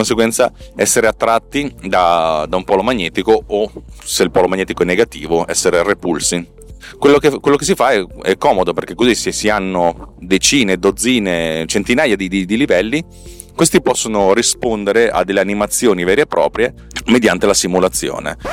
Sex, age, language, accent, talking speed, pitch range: male, 30-49, Italian, native, 160 wpm, 90-110 Hz